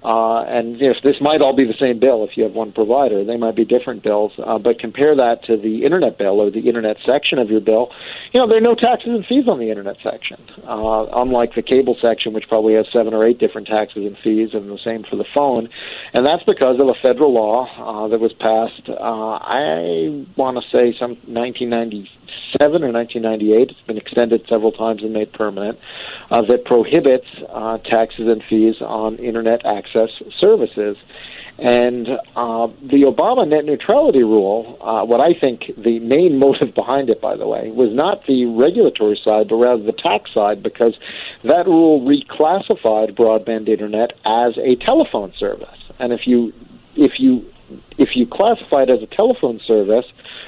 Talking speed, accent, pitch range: 195 wpm, American, 110-130 Hz